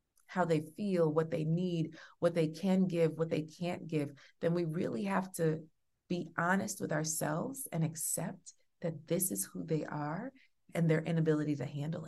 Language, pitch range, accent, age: English, 150-190 Hz, American, 30-49